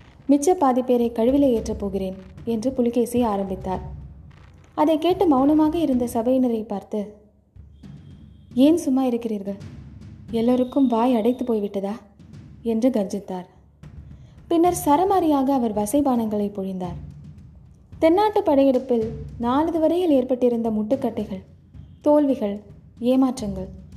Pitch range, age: 210-265 Hz, 20-39